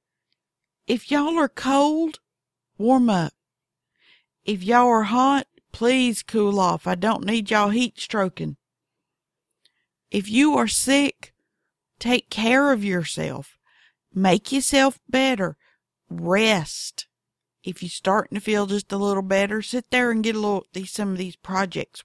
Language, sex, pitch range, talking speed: English, female, 185-245 Hz, 140 wpm